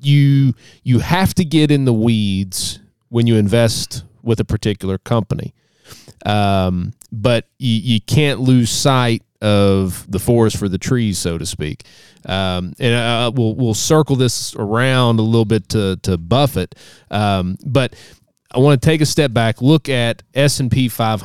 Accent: American